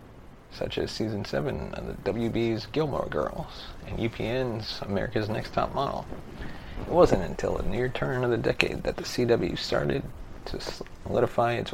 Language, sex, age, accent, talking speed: English, male, 30-49, American, 160 wpm